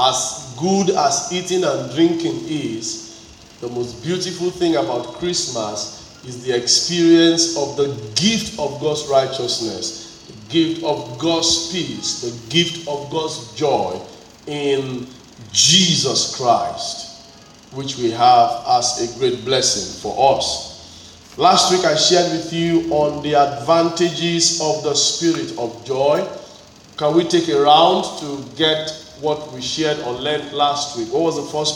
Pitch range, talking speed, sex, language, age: 135-170 Hz, 145 wpm, male, English, 40-59